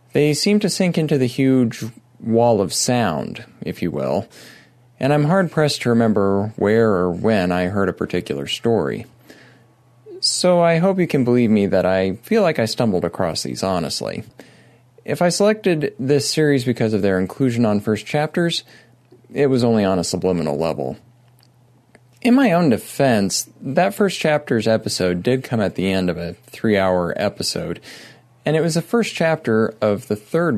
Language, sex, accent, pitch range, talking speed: English, male, American, 105-155 Hz, 170 wpm